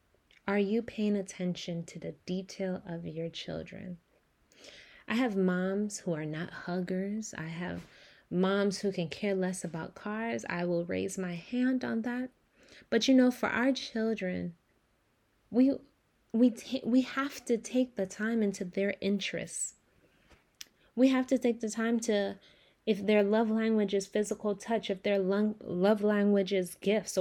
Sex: female